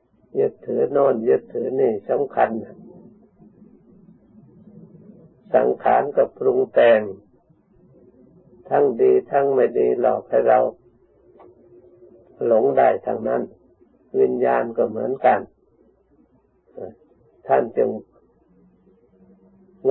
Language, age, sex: Thai, 60-79, male